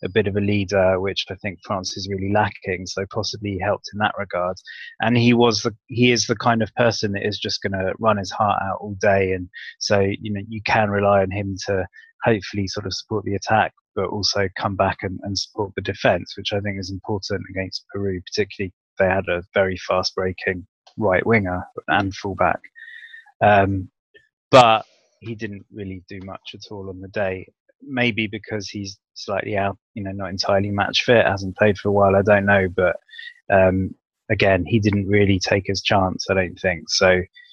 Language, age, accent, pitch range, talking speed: English, 20-39, British, 95-110 Hz, 205 wpm